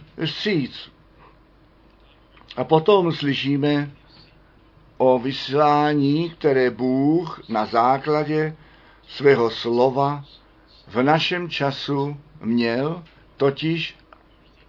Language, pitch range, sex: Czech, 125-155 Hz, male